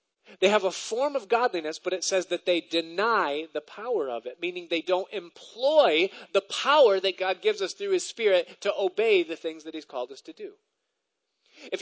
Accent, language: American, English